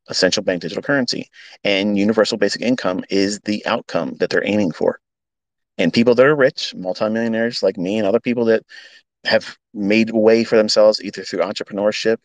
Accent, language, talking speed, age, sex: American, English, 170 wpm, 30-49, male